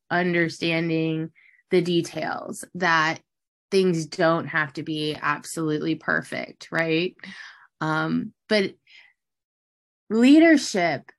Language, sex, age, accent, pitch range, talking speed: English, female, 20-39, American, 160-200 Hz, 80 wpm